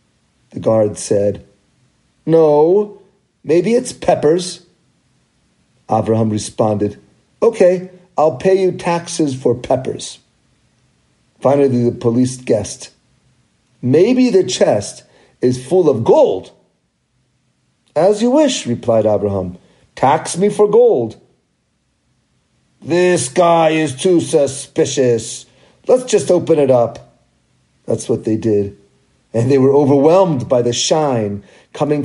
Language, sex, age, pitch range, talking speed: English, male, 50-69, 125-205 Hz, 110 wpm